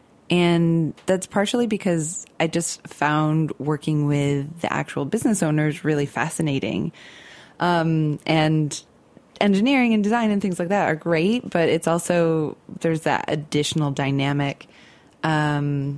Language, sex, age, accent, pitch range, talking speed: English, female, 20-39, American, 145-170 Hz, 130 wpm